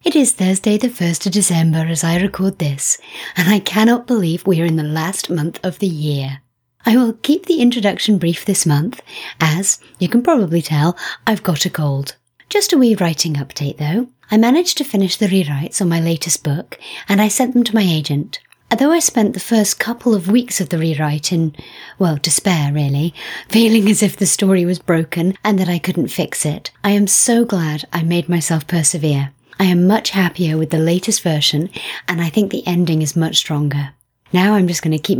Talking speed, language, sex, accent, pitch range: 210 wpm, English, female, British, 160-210 Hz